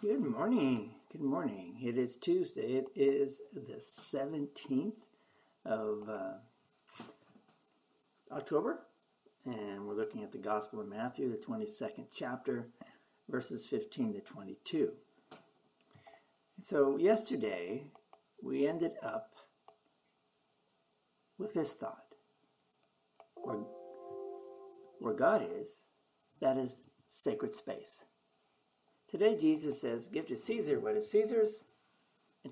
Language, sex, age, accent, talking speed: English, male, 60-79, American, 100 wpm